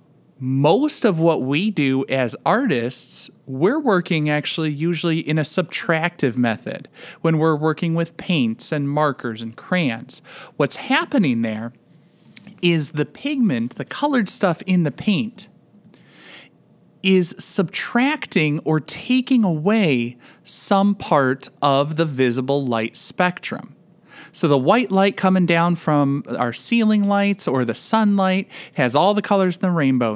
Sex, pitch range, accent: male, 140-205 Hz, American